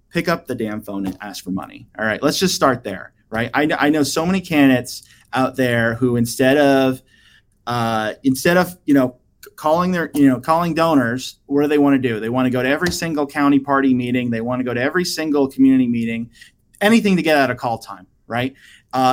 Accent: American